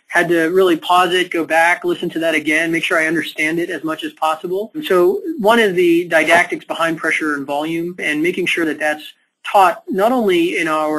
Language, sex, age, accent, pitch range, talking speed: English, male, 30-49, American, 155-245 Hz, 210 wpm